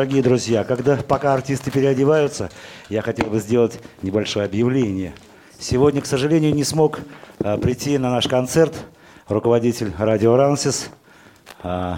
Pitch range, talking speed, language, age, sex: 110-145 Hz, 130 wpm, Russian, 50-69, male